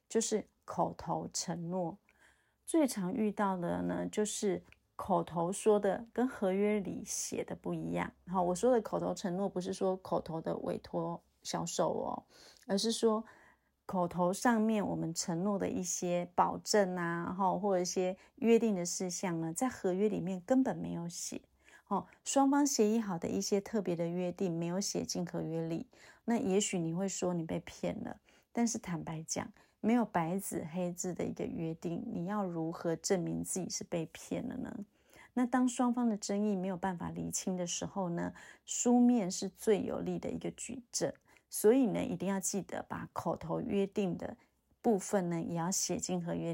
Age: 30-49